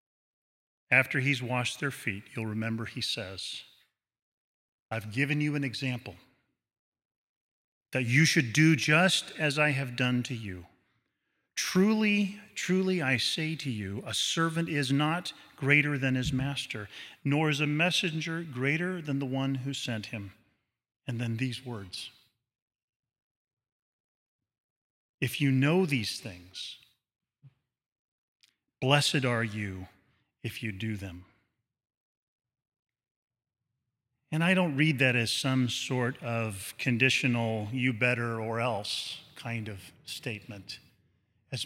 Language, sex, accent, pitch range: English, male, American, 115-140 Hz